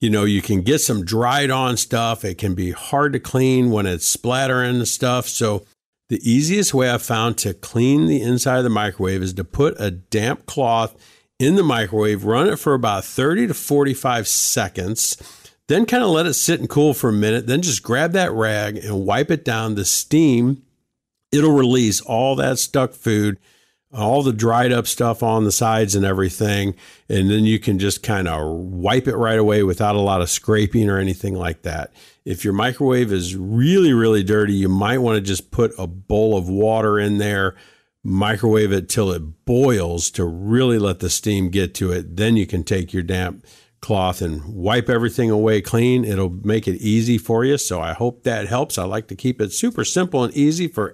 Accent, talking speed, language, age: American, 205 wpm, English, 50-69